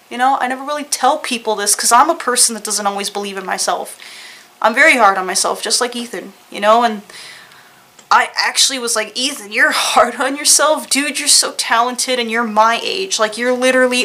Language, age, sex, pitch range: English, 20-39, female, 215-255 Hz